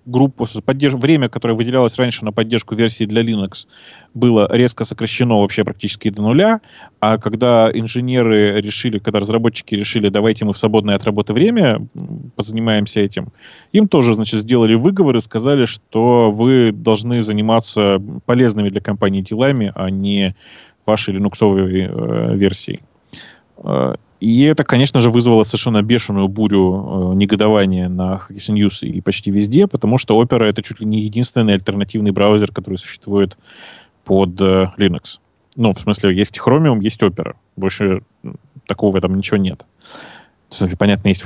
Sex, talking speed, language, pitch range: male, 150 wpm, Russian, 100-120 Hz